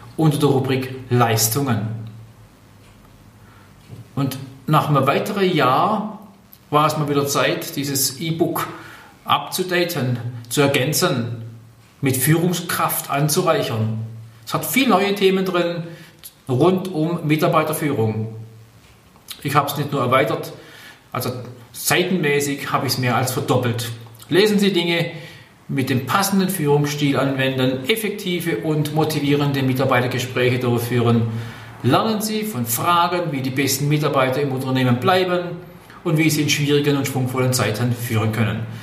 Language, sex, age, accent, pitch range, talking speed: German, male, 40-59, German, 120-155 Hz, 120 wpm